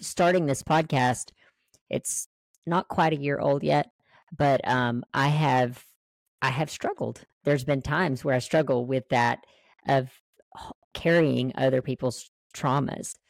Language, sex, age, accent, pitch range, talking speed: English, female, 40-59, American, 125-150 Hz, 135 wpm